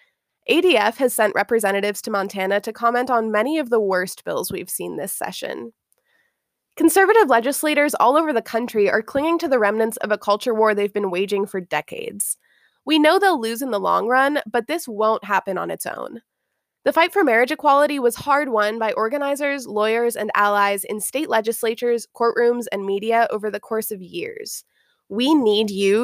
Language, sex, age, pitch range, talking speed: English, female, 20-39, 200-285 Hz, 185 wpm